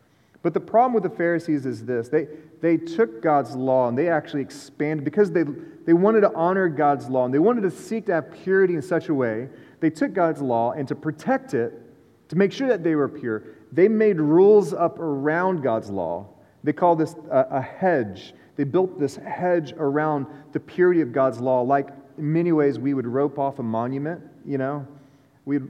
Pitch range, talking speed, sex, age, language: 130-170 Hz, 205 wpm, male, 30-49, English